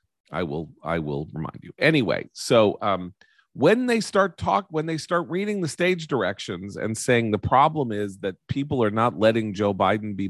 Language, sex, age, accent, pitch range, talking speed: English, male, 40-59, American, 100-145 Hz, 190 wpm